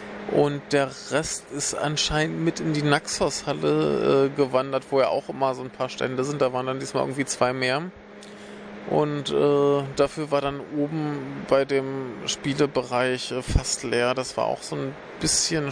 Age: 40-59